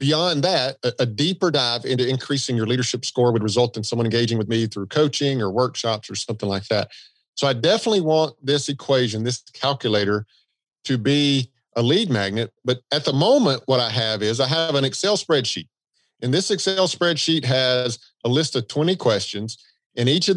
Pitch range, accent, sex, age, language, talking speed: 115-155 Hz, American, male, 50-69, English, 190 wpm